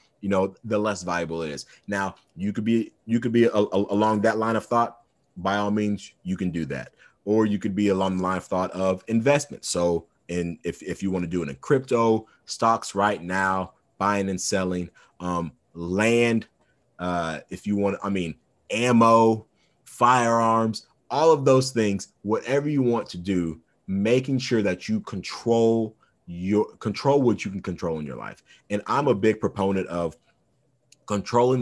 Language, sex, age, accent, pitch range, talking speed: English, male, 30-49, American, 90-115 Hz, 180 wpm